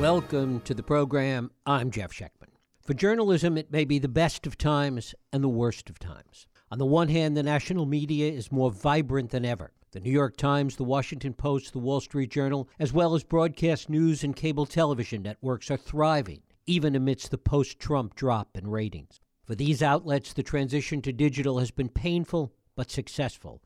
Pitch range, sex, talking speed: 125-150 Hz, male, 190 wpm